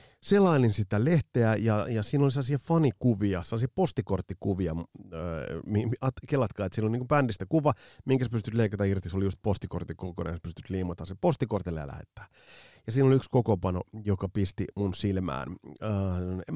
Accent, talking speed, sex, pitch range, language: native, 160 wpm, male, 95-120 Hz, Finnish